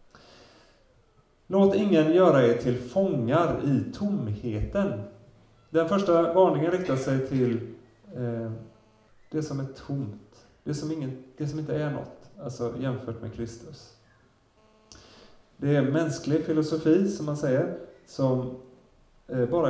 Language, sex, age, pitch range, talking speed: Swedish, male, 30-49, 120-155 Hz, 120 wpm